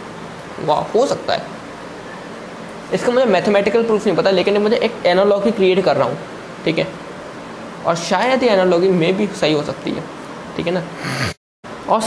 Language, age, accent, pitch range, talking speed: Hindi, 20-39, native, 180-225 Hz, 170 wpm